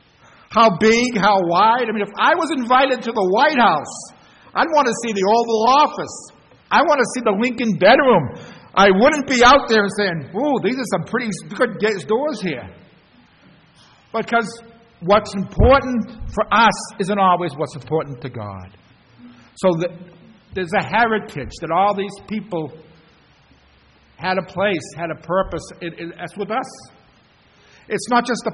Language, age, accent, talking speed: English, 60-79, American, 160 wpm